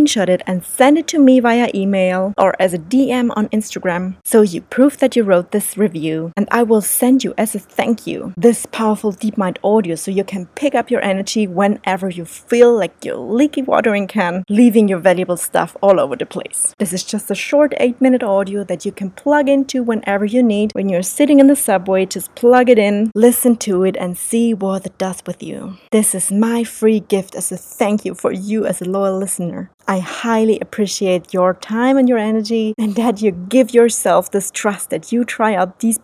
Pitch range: 190-245 Hz